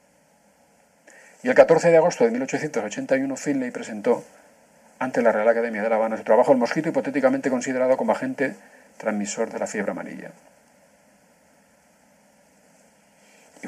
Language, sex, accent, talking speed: Spanish, male, Spanish, 130 wpm